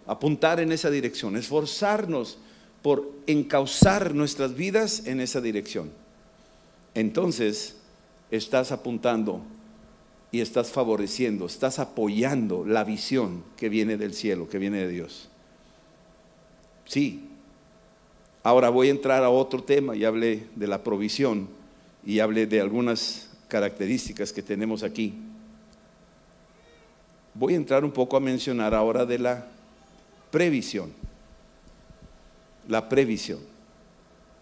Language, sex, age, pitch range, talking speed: Spanish, male, 50-69, 110-155 Hz, 110 wpm